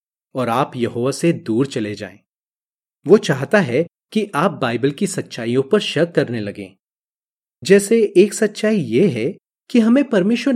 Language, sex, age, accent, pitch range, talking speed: Hindi, male, 30-49, native, 135-215 Hz, 155 wpm